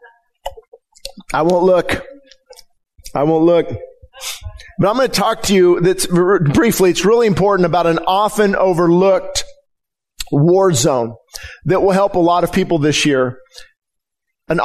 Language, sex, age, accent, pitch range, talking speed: English, male, 50-69, American, 175-220 Hz, 140 wpm